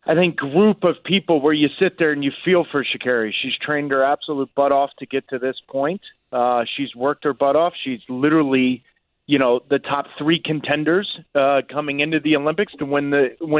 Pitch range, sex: 140-170 Hz, male